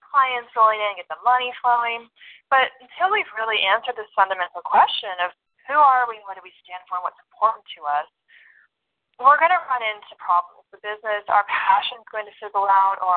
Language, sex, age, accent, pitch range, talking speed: English, female, 20-39, American, 190-255 Hz, 210 wpm